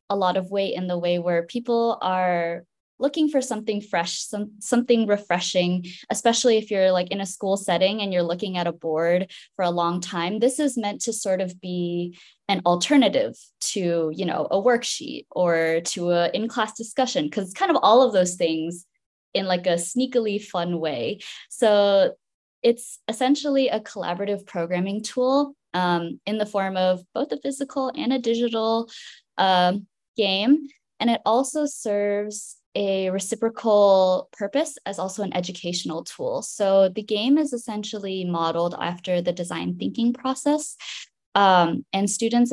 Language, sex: English, female